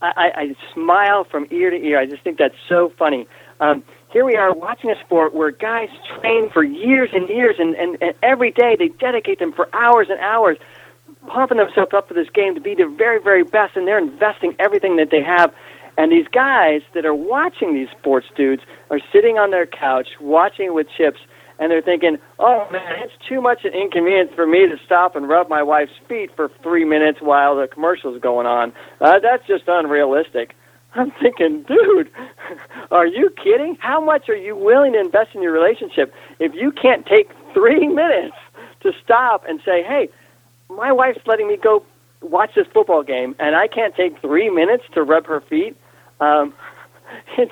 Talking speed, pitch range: 195 wpm, 160-260 Hz